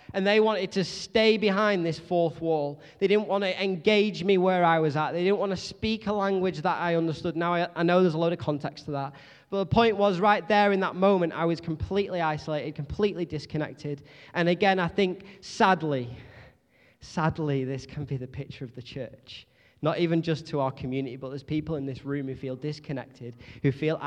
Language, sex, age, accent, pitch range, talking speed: English, male, 20-39, British, 135-170 Hz, 215 wpm